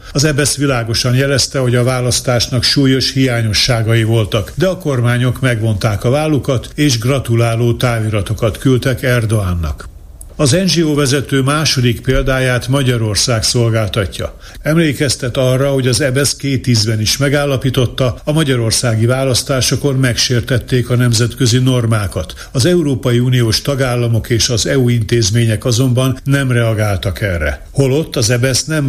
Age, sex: 60-79, male